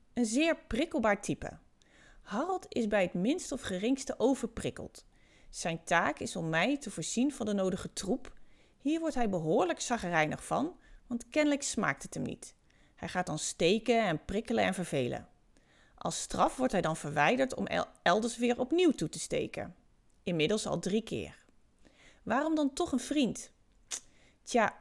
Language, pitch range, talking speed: Dutch, 180-270 Hz, 160 wpm